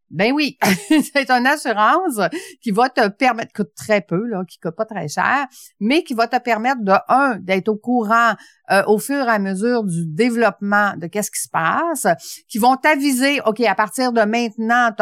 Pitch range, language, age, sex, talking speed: 190-250 Hz, French, 50-69, female, 200 wpm